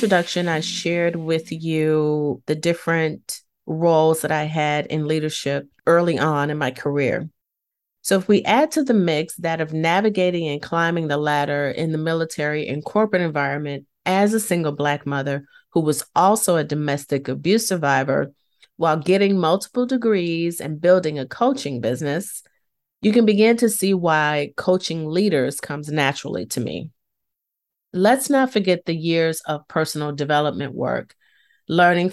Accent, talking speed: American, 150 wpm